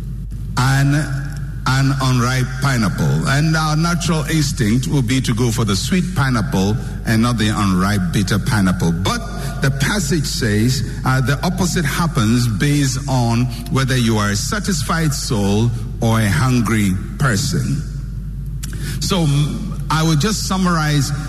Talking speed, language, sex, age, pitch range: 130 wpm, English, male, 60-79, 125-155 Hz